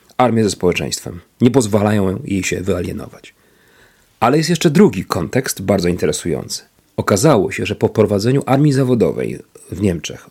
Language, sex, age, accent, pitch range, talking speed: Polish, male, 40-59, native, 105-135 Hz, 140 wpm